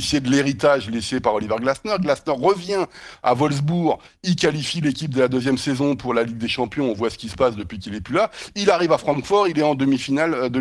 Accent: French